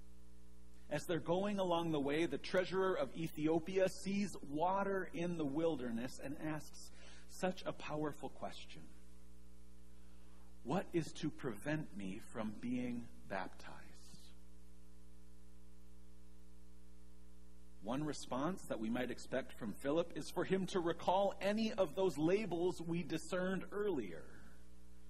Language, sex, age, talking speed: English, male, 40-59, 115 wpm